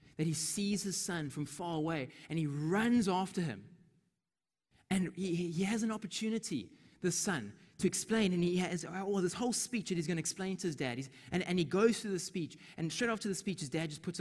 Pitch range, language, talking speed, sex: 140-195 Hz, English, 230 wpm, male